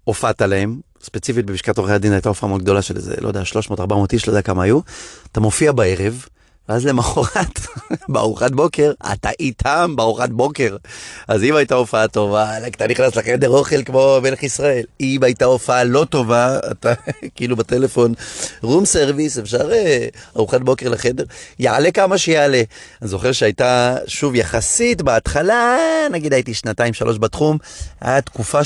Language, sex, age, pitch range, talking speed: Hebrew, male, 30-49, 110-155 Hz, 135 wpm